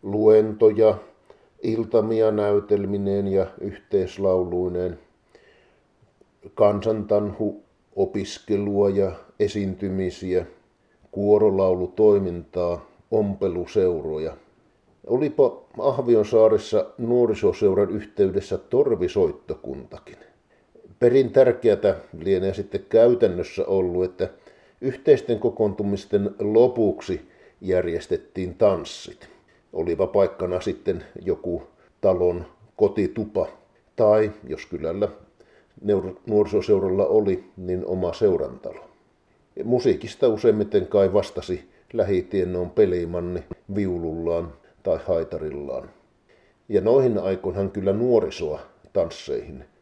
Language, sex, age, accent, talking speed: Finnish, male, 50-69, native, 70 wpm